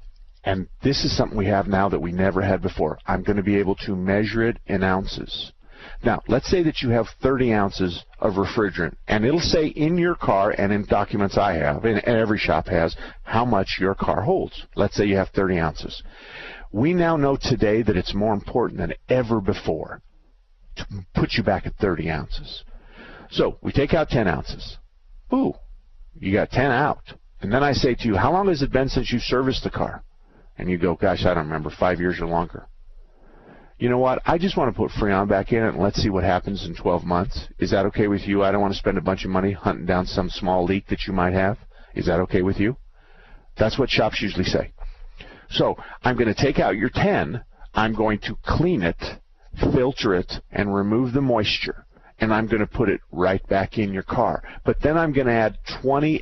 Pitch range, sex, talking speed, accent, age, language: 95-115 Hz, male, 220 wpm, American, 50-69, English